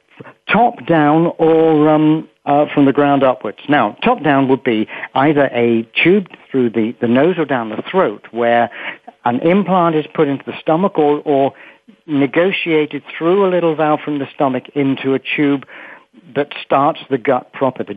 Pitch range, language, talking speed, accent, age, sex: 130-165 Hz, English, 175 wpm, British, 60-79, male